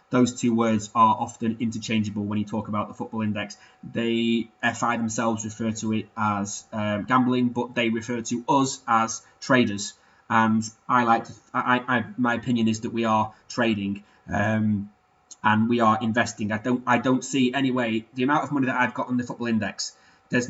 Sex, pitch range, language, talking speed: male, 110-130 Hz, English, 195 wpm